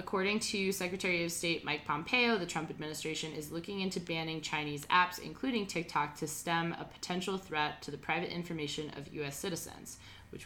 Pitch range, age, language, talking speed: 150-185 Hz, 20-39, English, 180 wpm